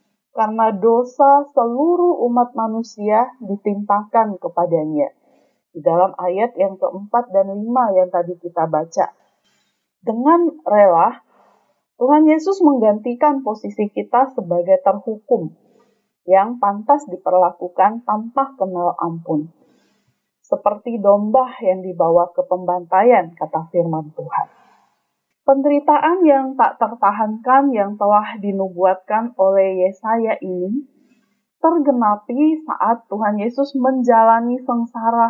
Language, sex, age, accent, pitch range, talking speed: Indonesian, female, 30-49, native, 200-265 Hz, 100 wpm